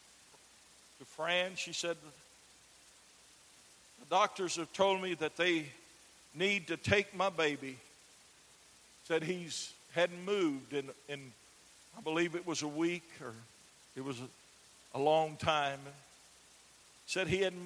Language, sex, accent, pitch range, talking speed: English, male, American, 135-170 Hz, 130 wpm